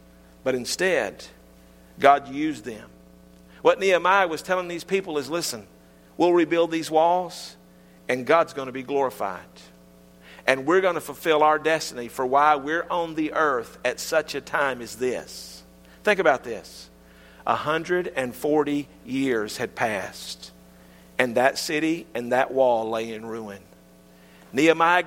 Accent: American